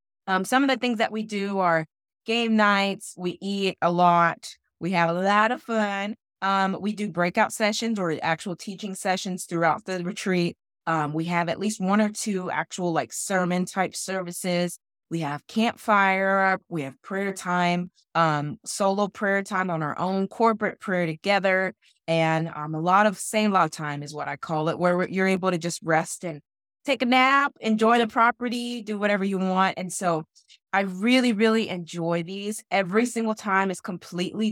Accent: American